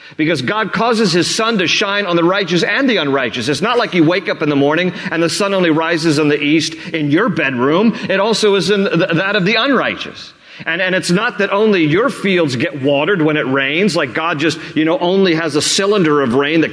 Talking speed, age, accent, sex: 235 wpm, 40-59, American, male